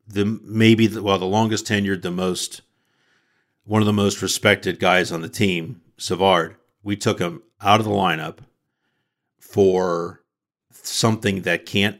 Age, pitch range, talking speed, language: 50-69, 95-110 Hz, 150 wpm, English